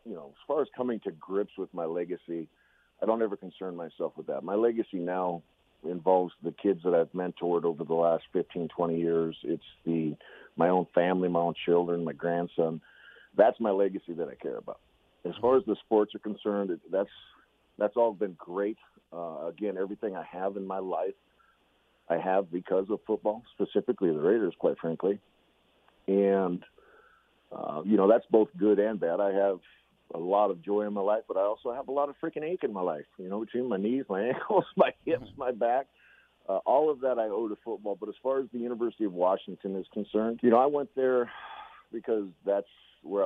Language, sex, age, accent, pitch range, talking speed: English, male, 50-69, American, 85-105 Hz, 205 wpm